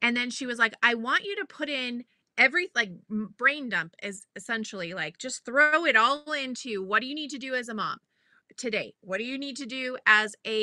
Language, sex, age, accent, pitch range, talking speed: English, female, 30-49, American, 215-280 Hz, 230 wpm